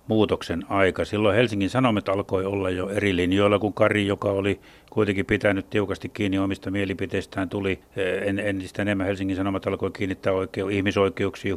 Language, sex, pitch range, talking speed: Finnish, male, 95-115 Hz, 150 wpm